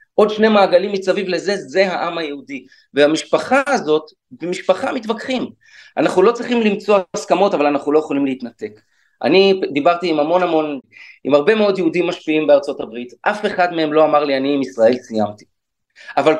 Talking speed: 165 wpm